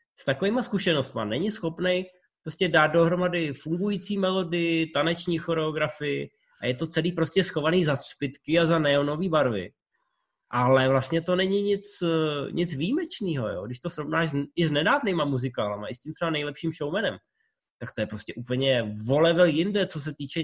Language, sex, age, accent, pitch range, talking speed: Czech, male, 20-39, native, 140-180 Hz, 160 wpm